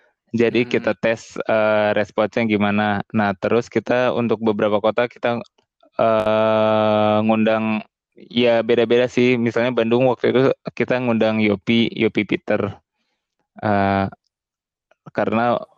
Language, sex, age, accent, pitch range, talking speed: Indonesian, male, 20-39, native, 110-120 Hz, 110 wpm